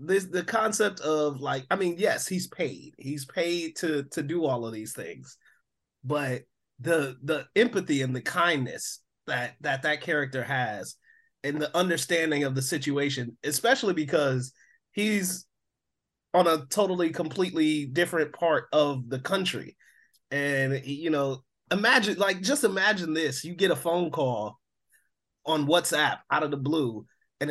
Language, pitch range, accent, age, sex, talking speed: English, 140-180 Hz, American, 30-49, male, 150 wpm